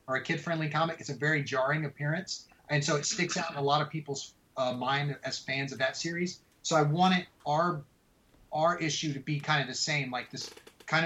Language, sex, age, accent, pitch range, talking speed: English, male, 30-49, American, 130-155 Hz, 220 wpm